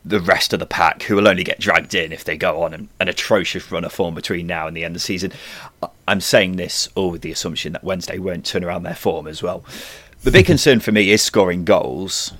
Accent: British